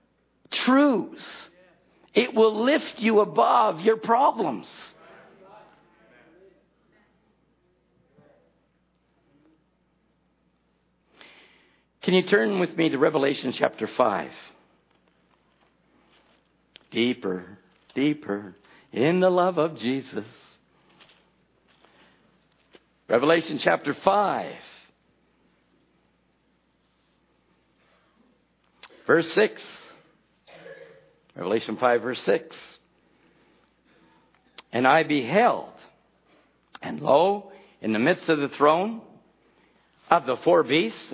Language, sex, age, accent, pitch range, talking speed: English, male, 60-79, American, 130-205 Hz, 70 wpm